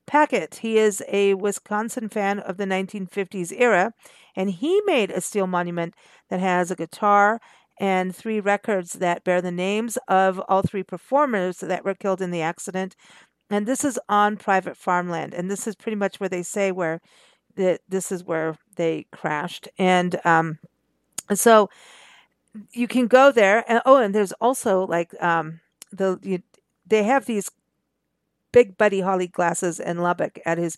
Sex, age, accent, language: female, 50-69, American, English